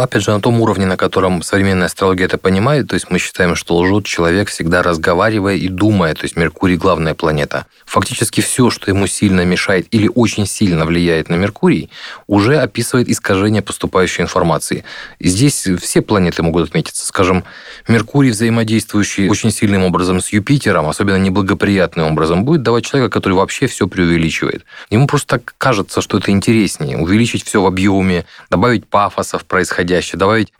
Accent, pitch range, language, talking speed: native, 90-115 Hz, Russian, 165 wpm